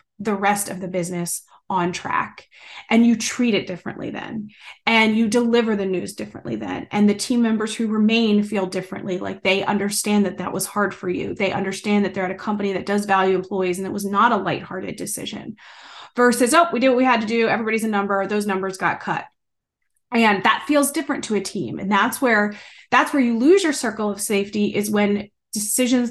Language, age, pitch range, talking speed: English, 30-49, 200-255 Hz, 210 wpm